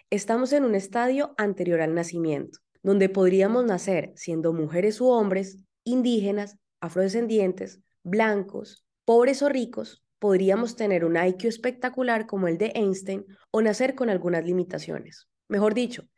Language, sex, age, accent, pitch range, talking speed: English, female, 20-39, Colombian, 180-230 Hz, 135 wpm